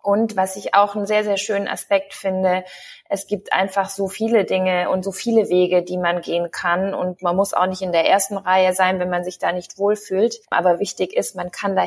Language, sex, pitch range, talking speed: German, female, 185-210 Hz, 235 wpm